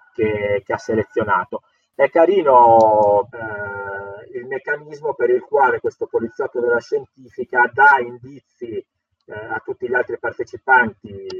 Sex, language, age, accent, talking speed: male, Italian, 30-49, native, 125 wpm